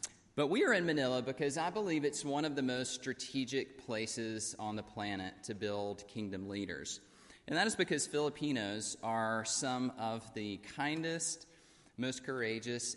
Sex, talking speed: male, 155 wpm